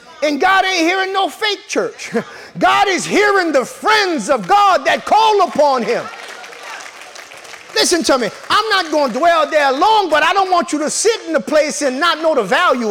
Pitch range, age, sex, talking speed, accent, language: 295-385 Hz, 30-49, male, 200 wpm, American, English